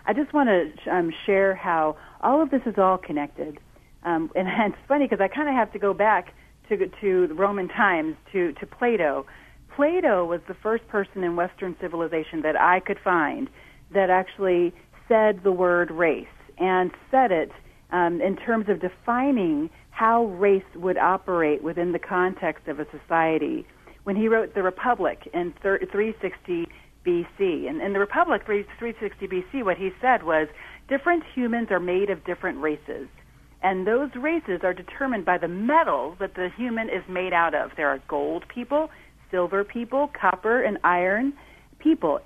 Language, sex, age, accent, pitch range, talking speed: English, female, 40-59, American, 180-255 Hz, 170 wpm